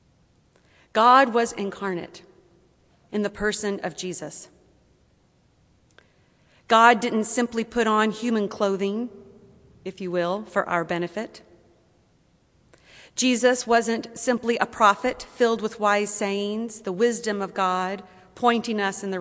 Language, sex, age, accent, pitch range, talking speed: English, female, 40-59, American, 185-235 Hz, 120 wpm